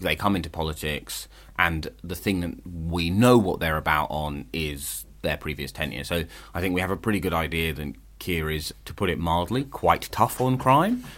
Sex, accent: male, British